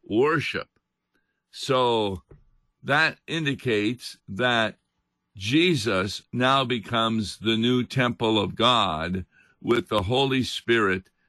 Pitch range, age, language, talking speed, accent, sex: 105-135 Hz, 50-69, English, 90 wpm, American, male